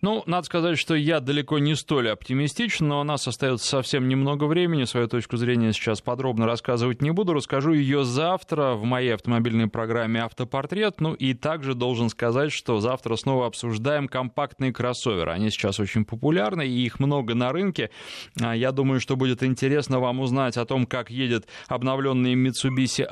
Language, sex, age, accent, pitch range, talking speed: Russian, male, 20-39, native, 115-145 Hz, 170 wpm